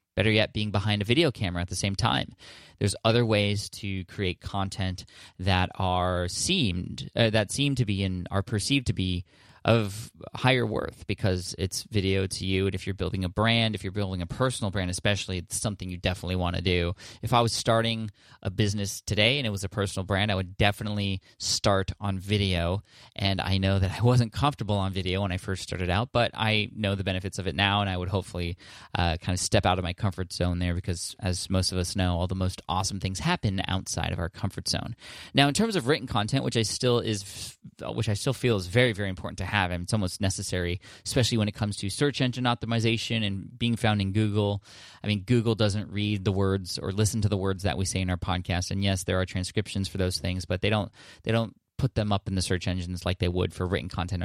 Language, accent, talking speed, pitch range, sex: English, American, 230 wpm, 95-115 Hz, male